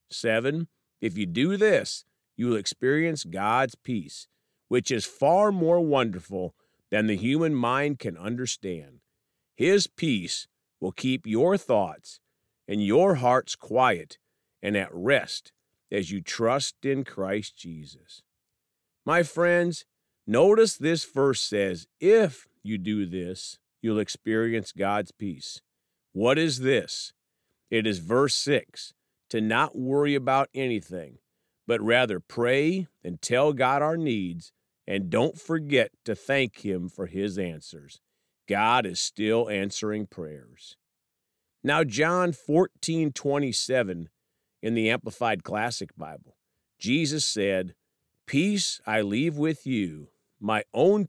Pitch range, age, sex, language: 100-145 Hz, 50-69, male, English